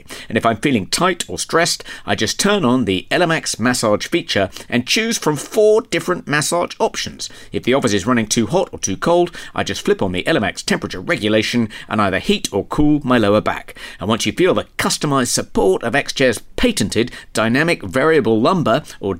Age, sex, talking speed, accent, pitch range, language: 50-69, male, 195 wpm, British, 105-150 Hz, English